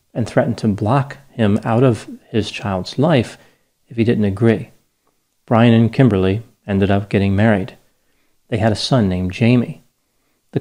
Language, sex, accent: English, male, American